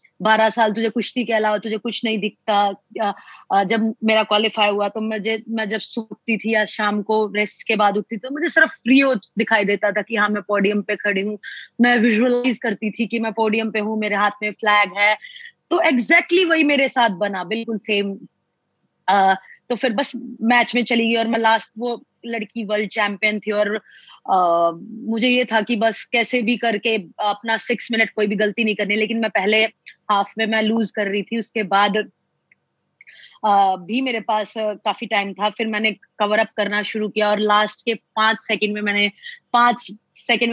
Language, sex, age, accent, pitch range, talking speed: Hindi, female, 20-39, native, 210-240 Hz, 150 wpm